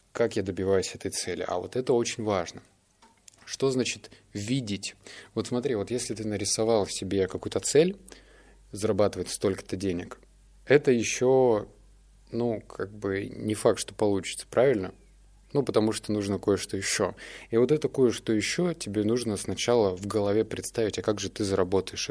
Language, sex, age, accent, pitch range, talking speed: Russian, male, 20-39, native, 95-115 Hz, 155 wpm